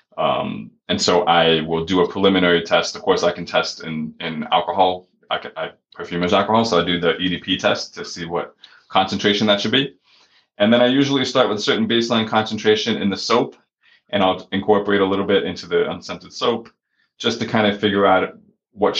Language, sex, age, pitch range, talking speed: English, male, 20-39, 85-105 Hz, 210 wpm